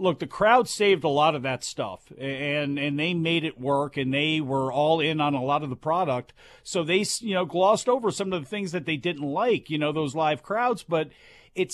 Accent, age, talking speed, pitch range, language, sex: American, 40-59, 240 wpm, 160-210 Hz, English, male